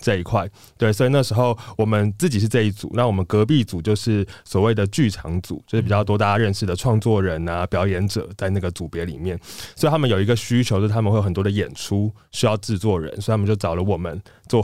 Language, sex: Chinese, male